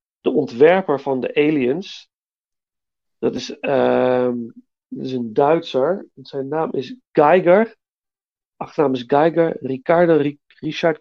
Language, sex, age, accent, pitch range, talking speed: Dutch, male, 40-59, Dutch, 130-165 Hz, 110 wpm